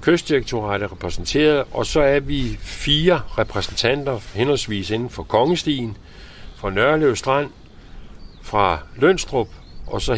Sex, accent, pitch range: male, native, 100-150 Hz